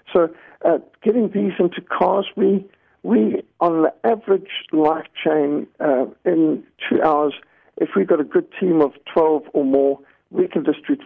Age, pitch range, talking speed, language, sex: 60-79, 145-200 Hz, 170 wpm, English, male